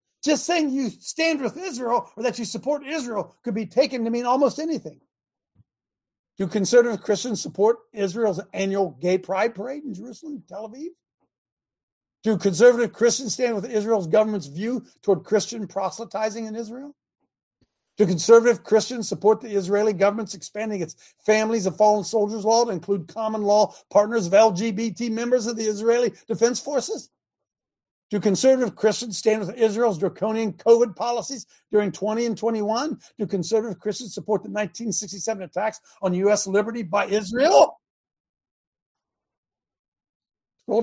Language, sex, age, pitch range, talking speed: English, male, 50-69, 195-235 Hz, 145 wpm